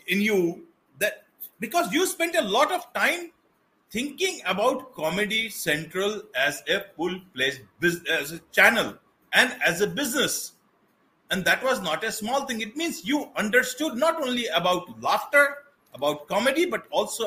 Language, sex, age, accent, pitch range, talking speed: English, male, 50-69, Indian, 195-300 Hz, 155 wpm